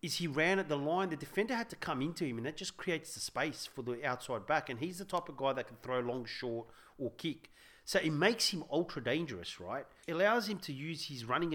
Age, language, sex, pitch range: 40-59, English, male, 125-180 Hz